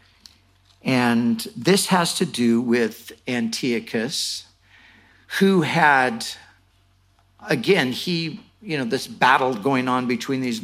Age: 50-69